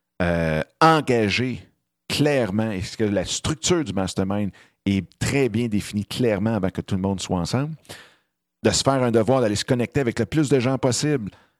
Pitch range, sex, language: 95-125 Hz, male, French